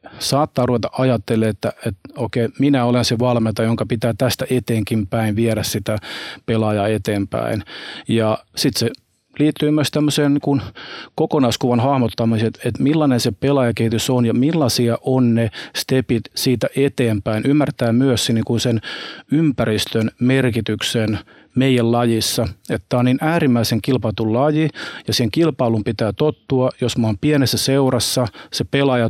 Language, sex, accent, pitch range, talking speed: Finnish, male, native, 110-130 Hz, 135 wpm